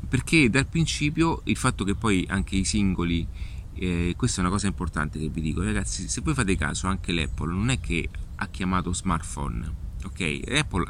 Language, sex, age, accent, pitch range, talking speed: Italian, male, 30-49, native, 85-100 Hz, 185 wpm